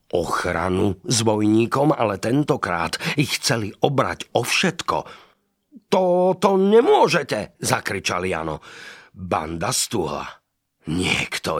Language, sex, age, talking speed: Slovak, male, 50-69, 90 wpm